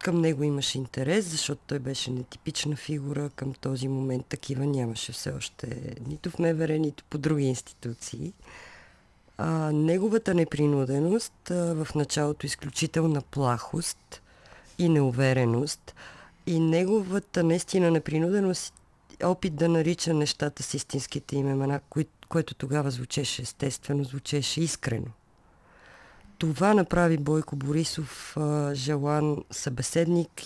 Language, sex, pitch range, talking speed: Bulgarian, female, 135-165 Hz, 110 wpm